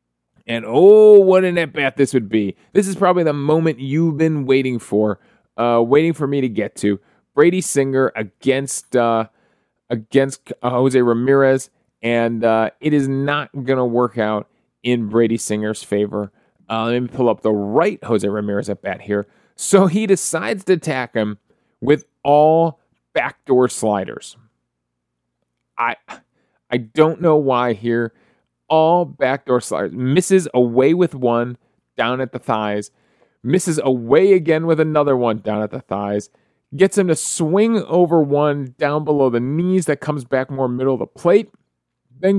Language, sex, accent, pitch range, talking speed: English, male, American, 115-165 Hz, 160 wpm